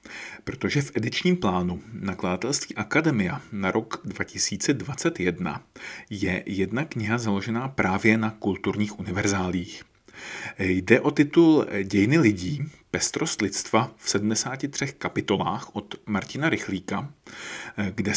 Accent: native